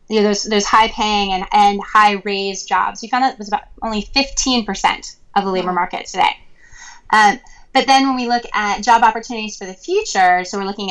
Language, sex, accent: English, female, American